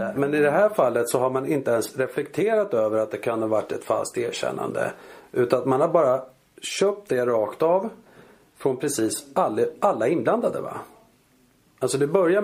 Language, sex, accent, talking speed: Swedish, male, native, 185 wpm